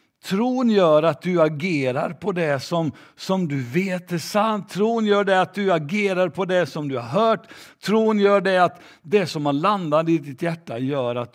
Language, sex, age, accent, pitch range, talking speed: Swedish, male, 60-79, native, 125-190 Hz, 200 wpm